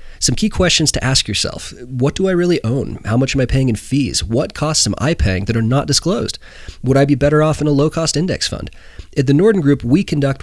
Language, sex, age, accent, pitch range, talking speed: English, male, 30-49, American, 100-130 Hz, 255 wpm